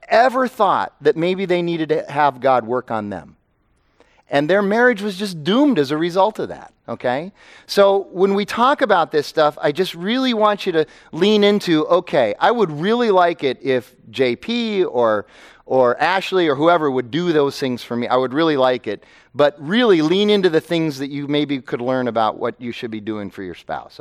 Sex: male